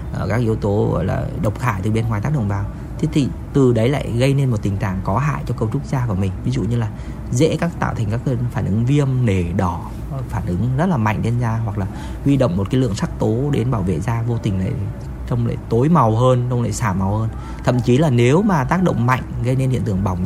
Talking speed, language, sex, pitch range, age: 275 wpm, Vietnamese, male, 100-130 Hz, 20-39